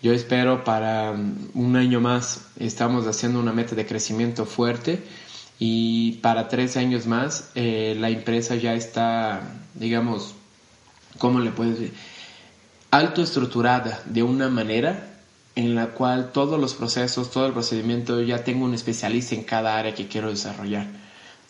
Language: Spanish